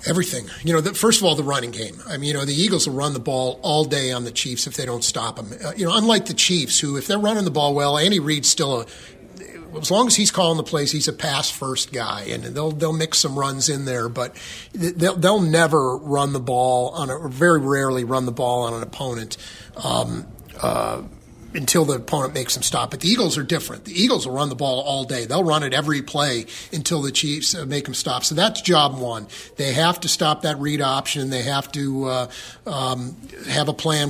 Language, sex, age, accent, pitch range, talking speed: English, male, 40-59, American, 130-160 Hz, 240 wpm